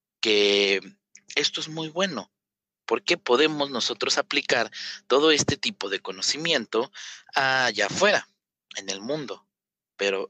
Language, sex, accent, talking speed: Spanish, male, Mexican, 115 wpm